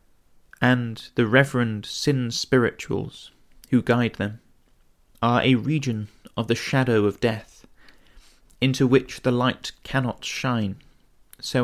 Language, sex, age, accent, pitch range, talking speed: English, male, 30-49, British, 110-130 Hz, 120 wpm